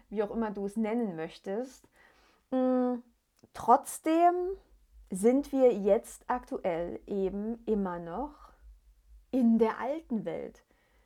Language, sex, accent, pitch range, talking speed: German, female, German, 185-225 Hz, 105 wpm